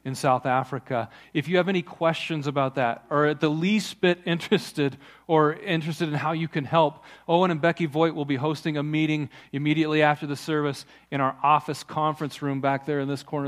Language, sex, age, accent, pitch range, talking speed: English, male, 40-59, American, 135-165 Hz, 205 wpm